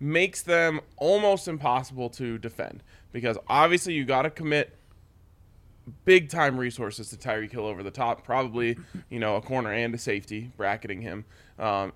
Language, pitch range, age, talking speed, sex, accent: English, 110-145 Hz, 20-39, 160 wpm, male, American